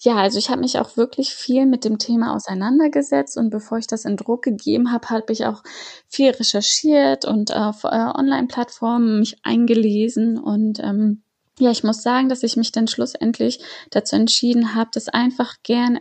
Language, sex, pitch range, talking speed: German, female, 215-250 Hz, 175 wpm